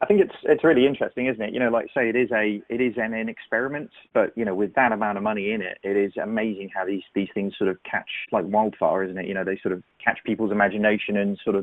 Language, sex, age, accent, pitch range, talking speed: English, male, 30-49, British, 100-135 Hz, 285 wpm